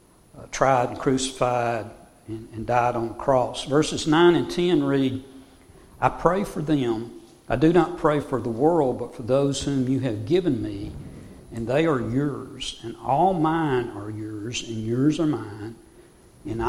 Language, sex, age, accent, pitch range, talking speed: English, male, 60-79, American, 120-150 Hz, 175 wpm